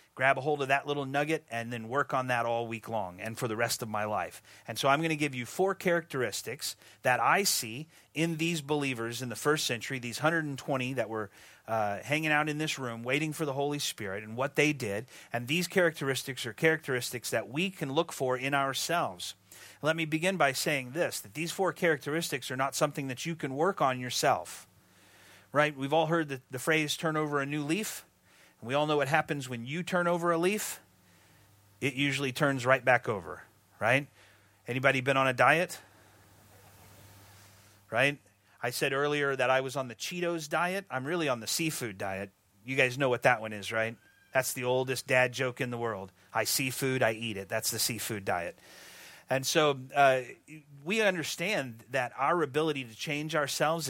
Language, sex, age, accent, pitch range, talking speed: English, male, 30-49, American, 115-150 Hz, 200 wpm